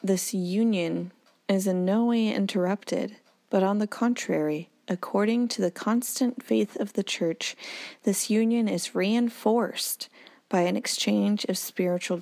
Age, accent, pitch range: 30-49, American, 175-225 Hz